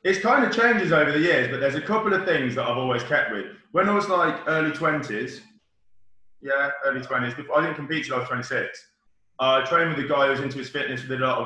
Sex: male